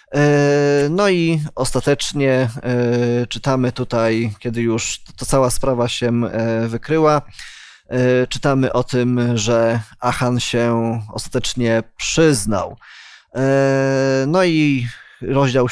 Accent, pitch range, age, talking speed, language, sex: native, 120-145 Hz, 20-39, 90 wpm, Polish, male